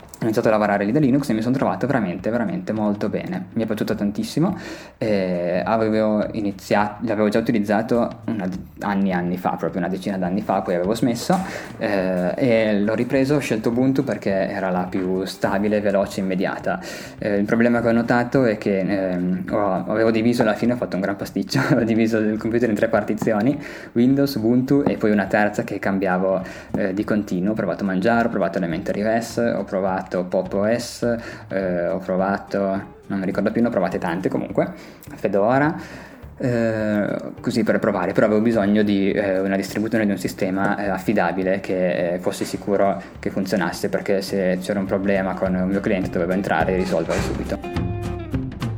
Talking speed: 185 wpm